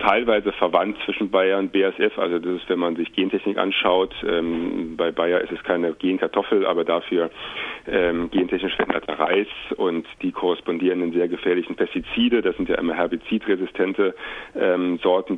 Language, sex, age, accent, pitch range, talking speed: German, male, 40-59, German, 85-95 Hz, 155 wpm